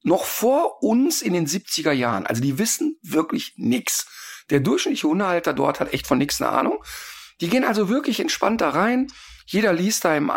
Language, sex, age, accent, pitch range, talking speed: German, male, 50-69, German, 145-245 Hz, 185 wpm